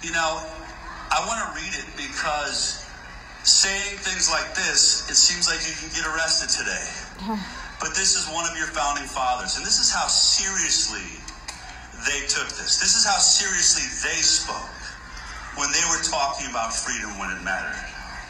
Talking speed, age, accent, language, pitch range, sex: 165 wpm, 50-69, American, Swedish, 165-220 Hz, male